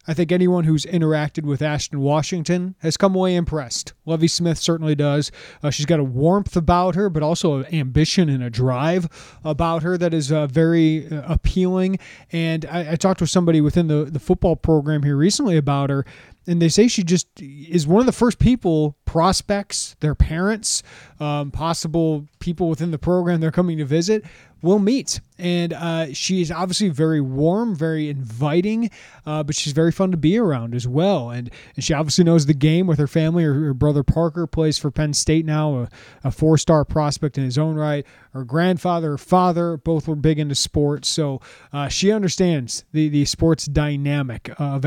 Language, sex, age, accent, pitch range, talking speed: English, male, 30-49, American, 145-175 Hz, 190 wpm